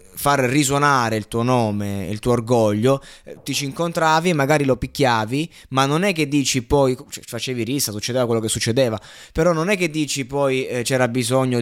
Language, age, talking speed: Italian, 20-39, 180 wpm